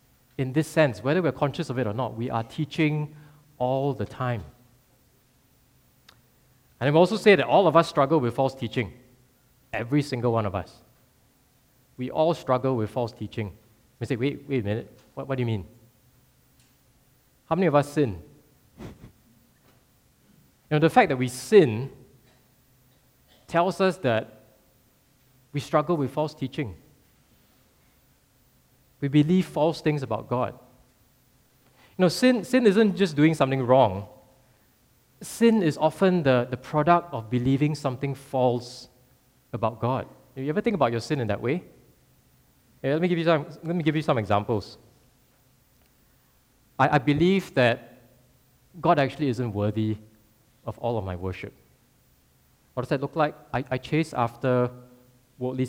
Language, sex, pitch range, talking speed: English, male, 120-150 Hz, 155 wpm